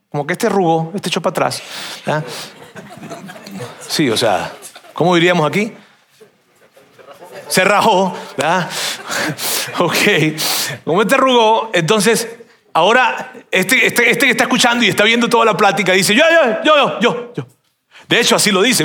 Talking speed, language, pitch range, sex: 150 wpm, Spanish, 165-220 Hz, male